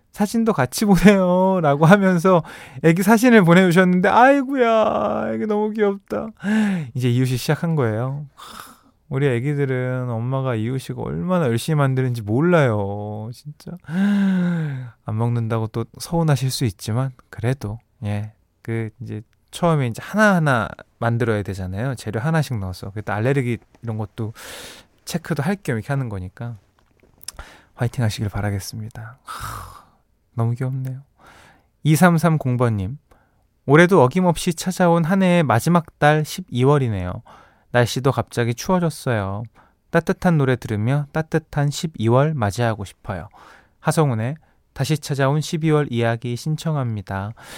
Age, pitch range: 20-39, 115-165 Hz